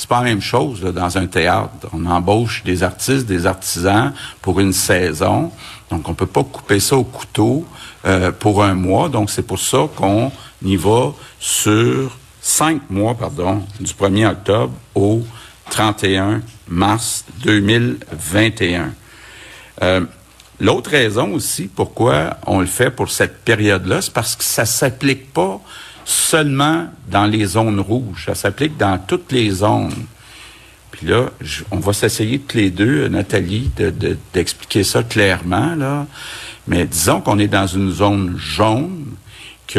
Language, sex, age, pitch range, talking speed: French, male, 60-79, 95-120 Hz, 150 wpm